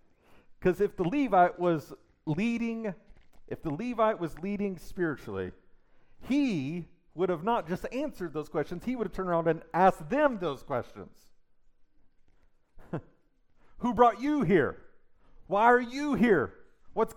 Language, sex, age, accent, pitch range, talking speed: English, male, 40-59, American, 125-200 Hz, 135 wpm